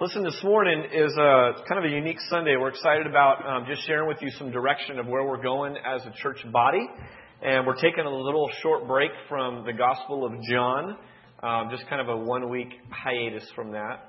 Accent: American